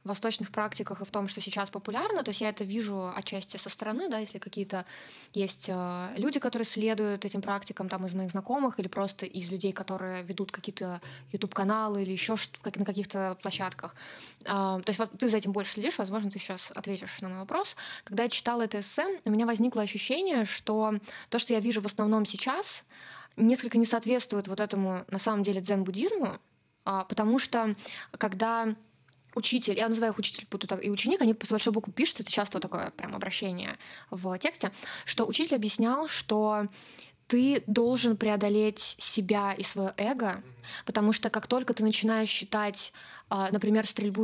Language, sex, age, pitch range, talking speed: Russian, female, 20-39, 200-235 Hz, 170 wpm